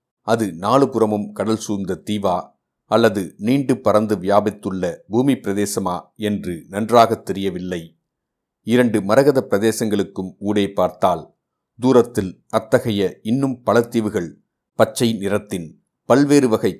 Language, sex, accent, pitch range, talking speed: Tamil, male, native, 95-115 Hz, 90 wpm